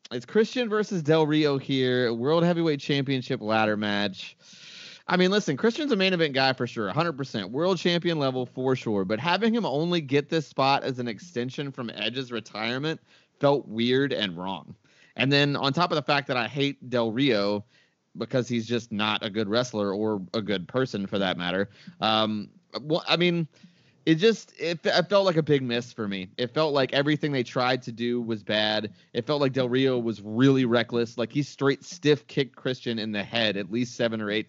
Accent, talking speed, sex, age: American, 205 wpm, male, 30-49